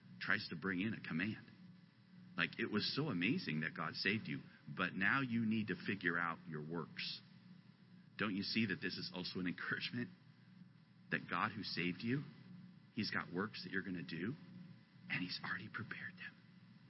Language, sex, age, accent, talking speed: English, male, 40-59, American, 180 wpm